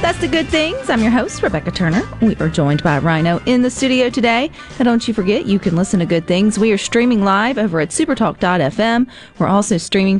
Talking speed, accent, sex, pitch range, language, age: 225 wpm, American, female, 165-240 Hz, English, 40-59